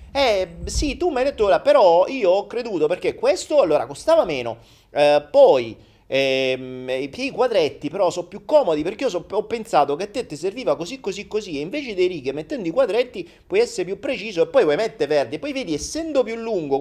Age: 30-49